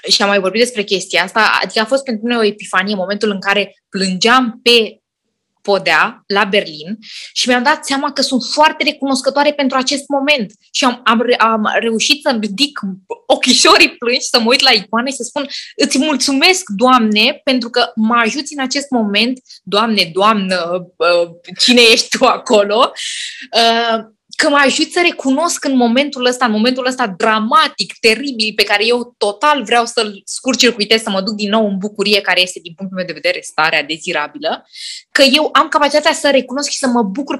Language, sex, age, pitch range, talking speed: Romanian, female, 20-39, 210-275 Hz, 180 wpm